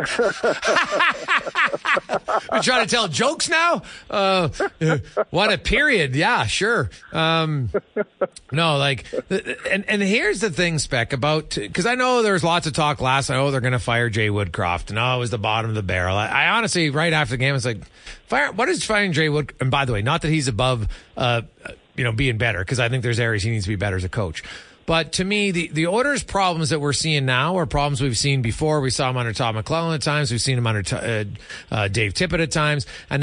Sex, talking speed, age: male, 225 wpm, 40-59